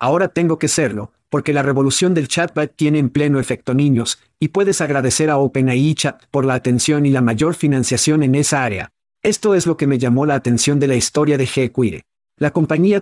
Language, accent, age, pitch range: Spanish, Mexican, 50-69, 130-155 Hz